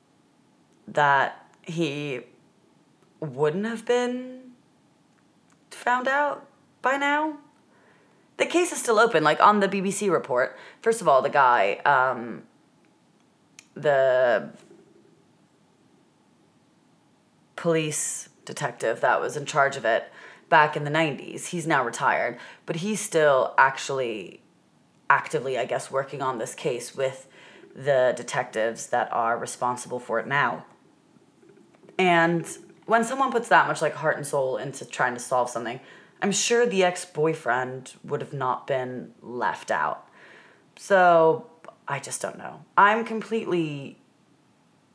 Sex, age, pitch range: female, 30-49, 145-215 Hz